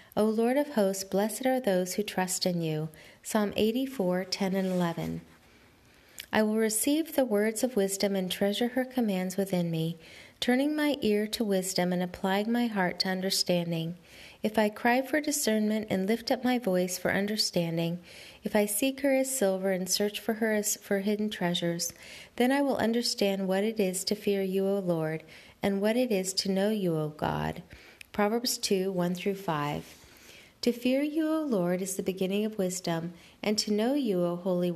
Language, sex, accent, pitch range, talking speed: English, female, American, 180-220 Hz, 190 wpm